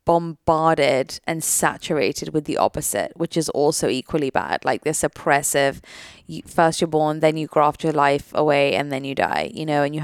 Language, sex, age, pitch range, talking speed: English, female, 20-39, 150-170 Hz, 185 wpm